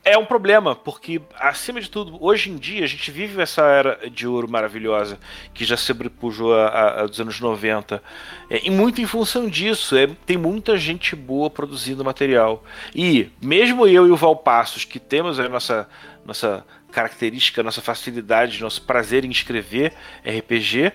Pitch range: 120-195 Hz